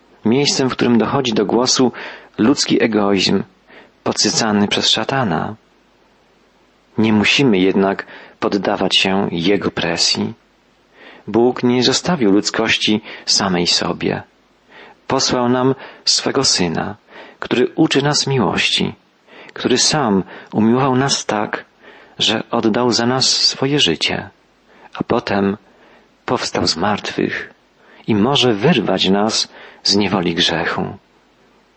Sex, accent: male, native